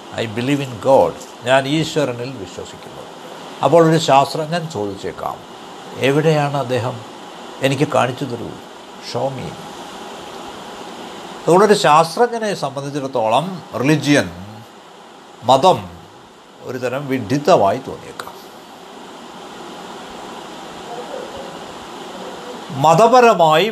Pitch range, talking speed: 125-180 Hz, 65 wpm